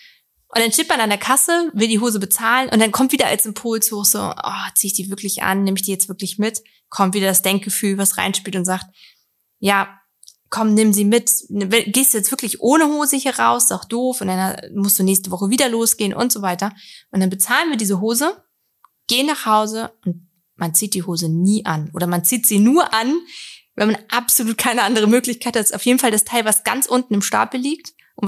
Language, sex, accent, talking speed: German, female, German, 230 wpm